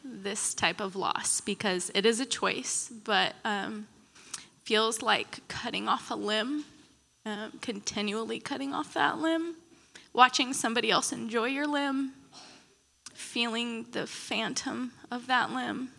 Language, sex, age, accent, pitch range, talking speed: English, female, 20-39, American, 220-265 Hz, 130 wpm